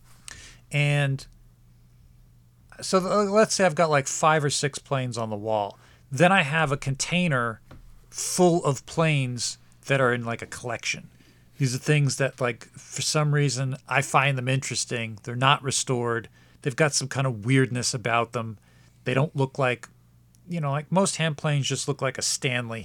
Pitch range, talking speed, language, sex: 115-145 Hz, 175 wpm, English, male